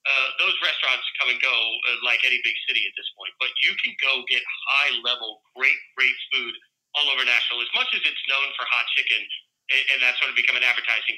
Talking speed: 225 wpm